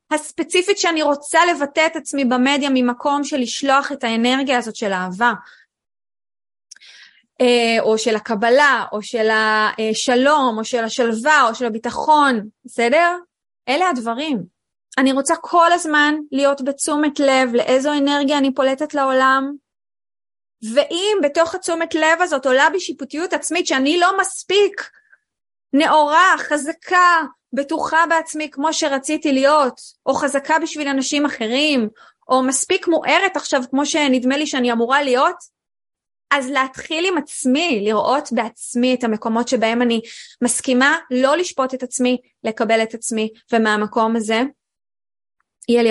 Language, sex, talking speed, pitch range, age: Hebrew, female, 125 wpm, 230-305 Hz, 20-39